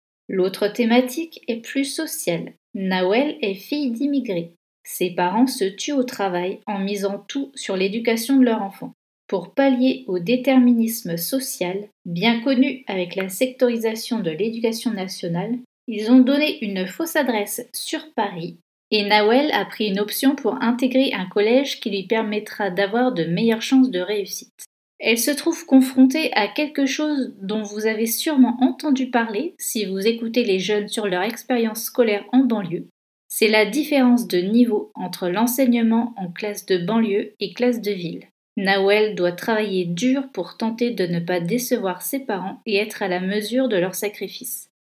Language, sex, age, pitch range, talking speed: French, female, 30-49, 195-255 Hz, 165 wpm